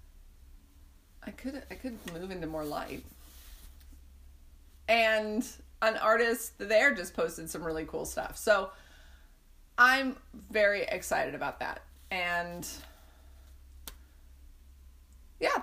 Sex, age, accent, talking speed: female, 30-49, American, 100 wpm